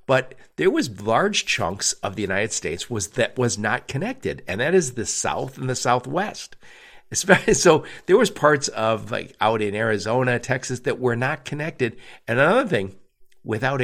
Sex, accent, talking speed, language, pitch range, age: male, American, 175 wpm, English, 100-140 Hz, 50-69